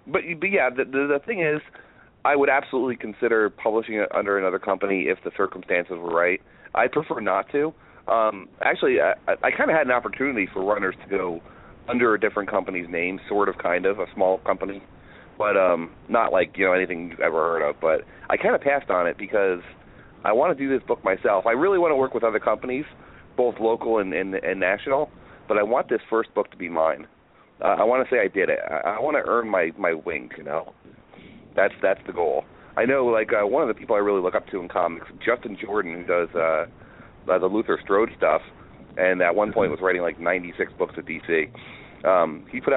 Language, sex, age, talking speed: English, male, 30-49, 225 wpm